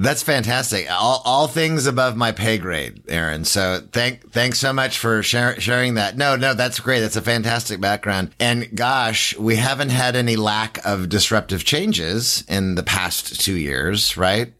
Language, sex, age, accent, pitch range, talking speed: English, male, 30-49, American, 90-120 Hz, 175 wpm